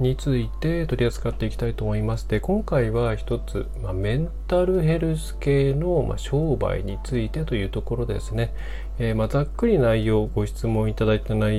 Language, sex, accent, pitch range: Japanese, male, native, 100-130 Hz